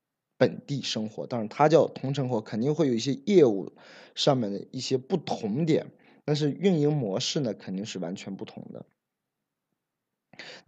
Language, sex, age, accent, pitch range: Chinese, male, 20-39, native, 100-145 Hz